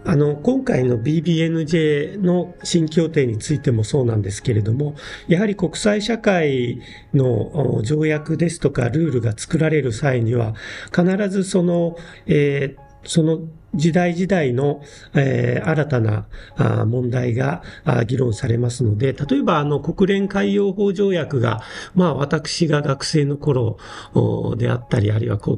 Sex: male